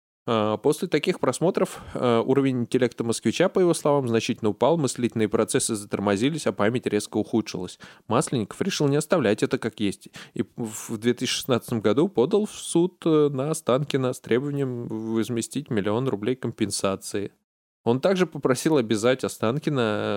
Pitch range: 115-160 Hz